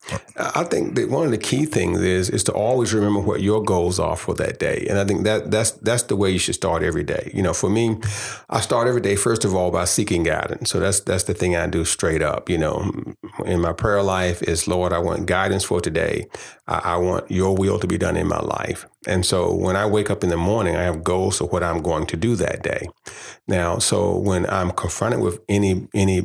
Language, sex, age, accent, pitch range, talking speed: English, male, 40-59, American, 90-105 Hz, 245 wpm